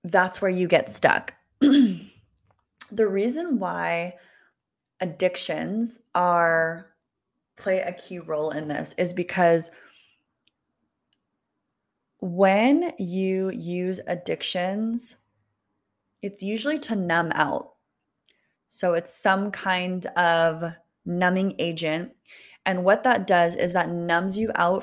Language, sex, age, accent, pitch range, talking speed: English, female, 20-39, American, 165-200 Hz, 105 wpm